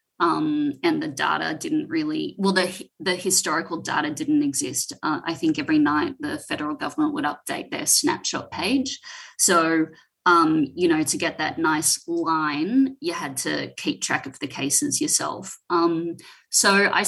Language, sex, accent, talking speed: English, female, Australian, 165 wpm